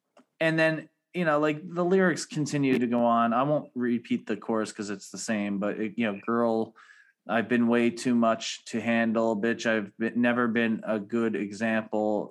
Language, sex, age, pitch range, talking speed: English, male, 20-39, 105-120 Hz, 185 wpm